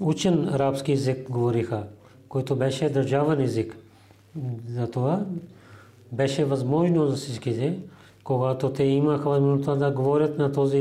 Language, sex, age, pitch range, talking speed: Bulgarian, male, 40-59, 115-145 Hz, 115 wpm